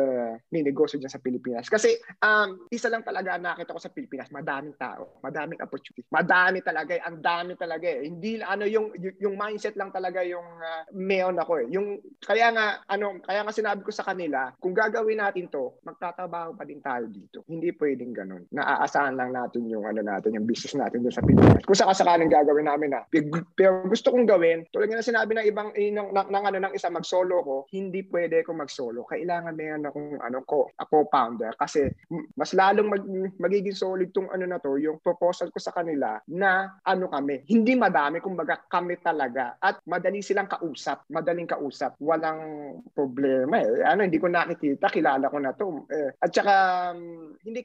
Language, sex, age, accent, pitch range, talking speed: Filipino, male, 20-39, native, 150-195 Hz, 195 wpm